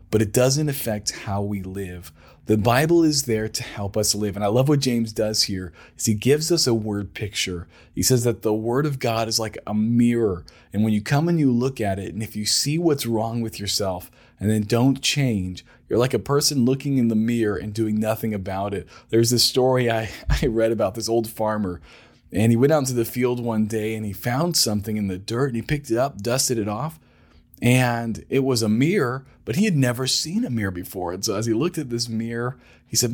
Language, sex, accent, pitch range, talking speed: English, male, American, 105-135 Hz, 235 wpm